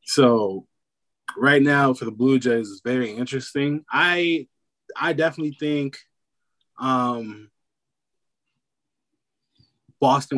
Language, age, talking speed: English, 20-39, 95 wpm